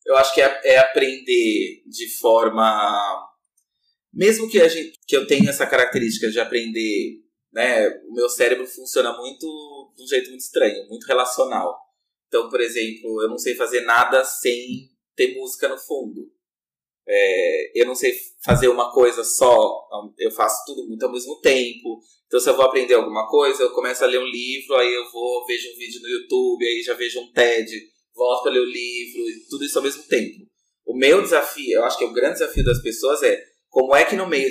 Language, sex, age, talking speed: Portuguese, male, 20-39, 200 wpm